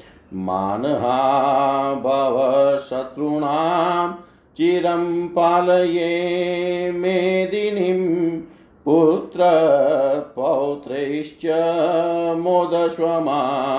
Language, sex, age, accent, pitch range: Hindi, male, 50-69, native, 140-170 Hz